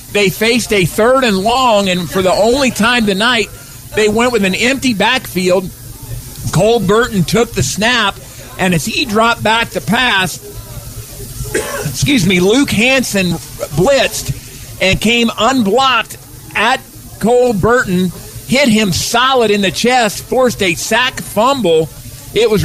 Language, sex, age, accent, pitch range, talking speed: English, male, 50-69, American, 160-225 Hz, 140 wpm